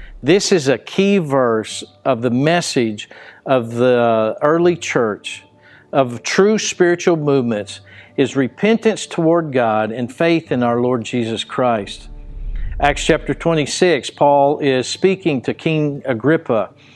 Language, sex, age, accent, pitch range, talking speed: English, male, 50-69, American, 125-170 Hz, 125 wpm